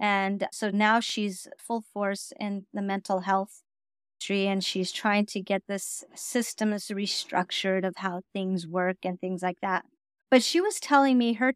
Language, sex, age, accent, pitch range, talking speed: English, female, 30-49, American, 200-250 Hz, 175 wpm